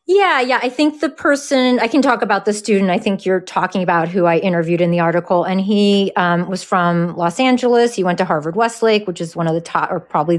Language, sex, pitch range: English, female, 175-230 Hz